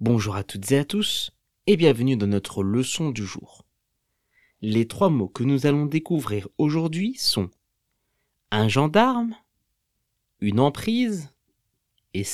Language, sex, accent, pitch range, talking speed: French, male, French, 105-170 Hz, 130 wpm